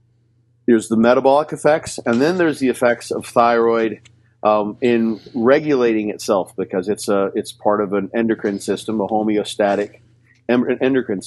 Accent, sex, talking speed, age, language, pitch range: American, male, 145 wpm, 50-69, English, 110-120 Hz